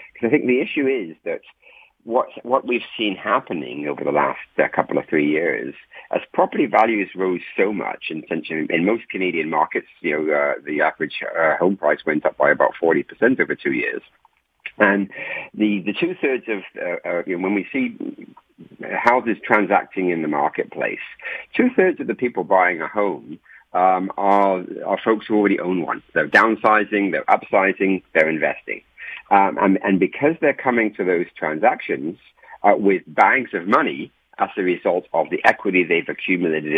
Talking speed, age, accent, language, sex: 175 wpm, 50-69, British, English, male